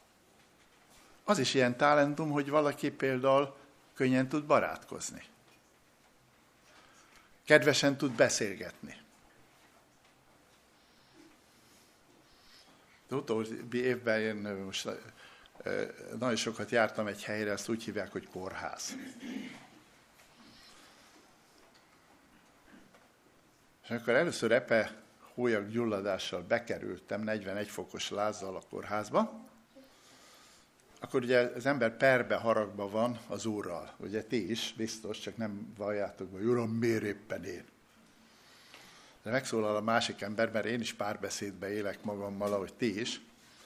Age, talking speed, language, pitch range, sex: 60-79, 100 wpm, Hungarian, 105-145 Hz, male